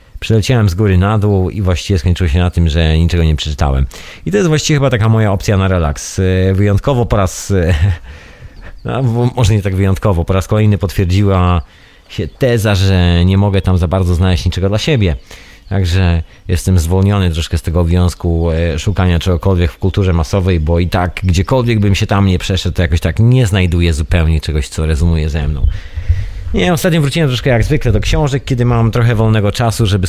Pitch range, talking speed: 85-105 Hz, 190 wpm